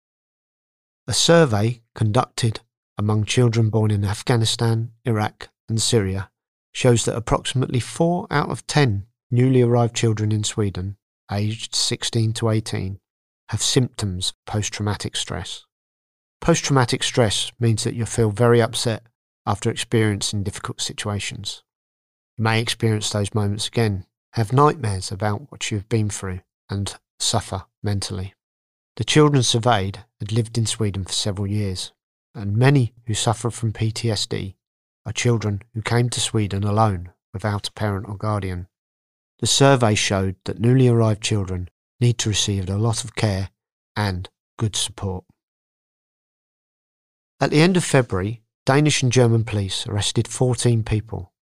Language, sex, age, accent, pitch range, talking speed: English, male, 40-59, British, 100-120 Hz, 135 wpm